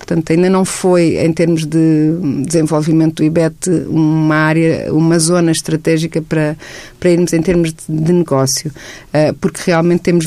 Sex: female